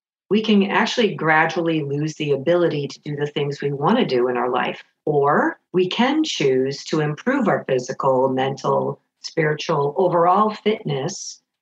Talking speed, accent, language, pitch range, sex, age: 155 wpm, American, English, 160-200 Hz, female, 50-69